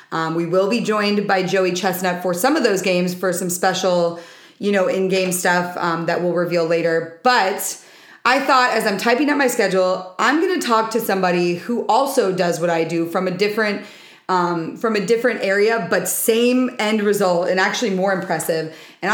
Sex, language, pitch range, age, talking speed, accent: female, English, 185-230 Hz, 30-49, 200 wpm, American